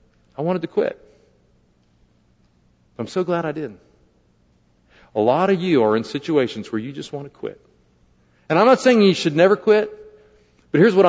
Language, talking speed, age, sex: English, 180 wpm, 50-69, male